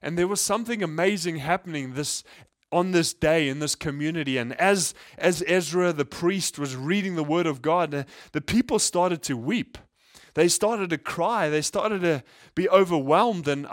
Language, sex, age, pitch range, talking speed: English, male, 20-39, 150-180 Hz, 175 wpm